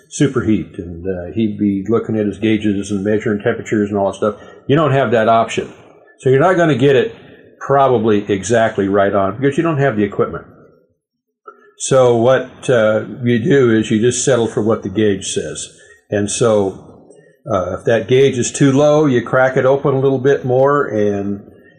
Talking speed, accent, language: 195 wpm, American, English